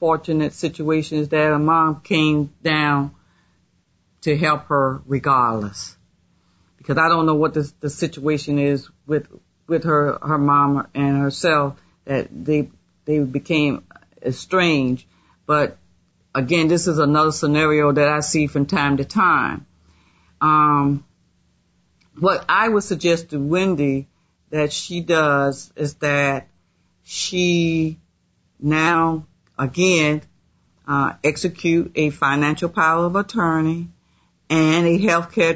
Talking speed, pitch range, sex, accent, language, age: 120 wpm, 140-160 Hz, female, American, English, 40-59